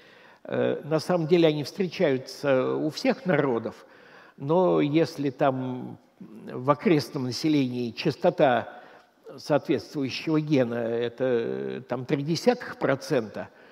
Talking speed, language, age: 90 wpm, Russian, 60-79